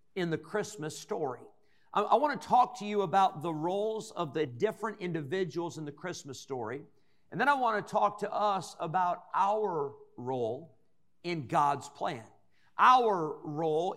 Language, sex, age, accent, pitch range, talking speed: English, male, 50-69, American, 155-205 Hz, 160 wpm